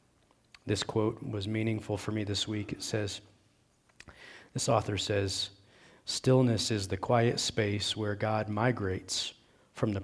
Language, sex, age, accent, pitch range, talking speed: English, male, 40-59, American, 105-120 Hz, 135 wpm